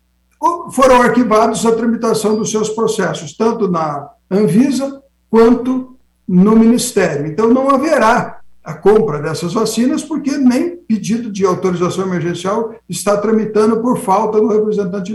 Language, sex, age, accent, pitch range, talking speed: Portuguese, male, 60-79, Brazilian, 190-250 Hz, 125 wpm